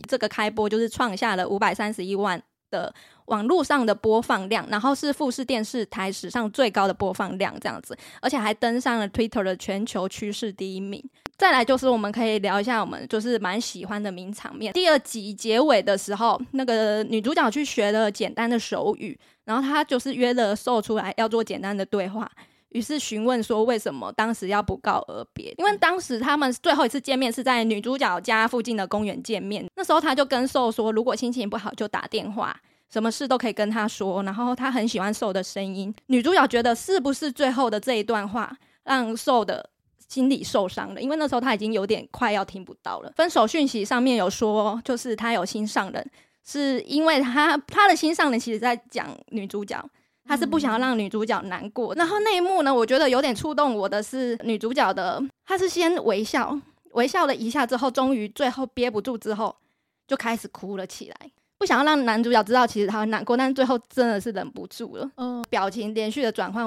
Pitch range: 215-270 Hz